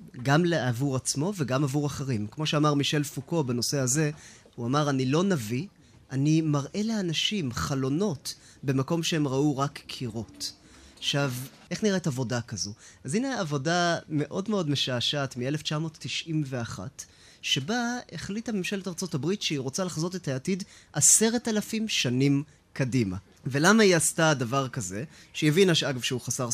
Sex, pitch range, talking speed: male, 130-185 Hz, 140 wpm